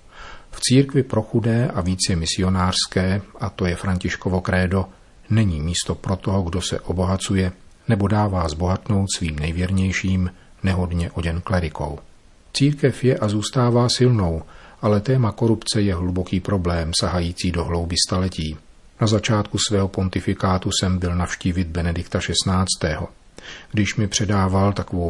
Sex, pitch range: male, 90-110 Hz